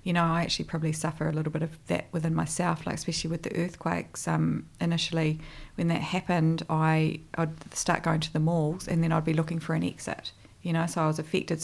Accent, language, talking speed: Australian, English, 225 wpm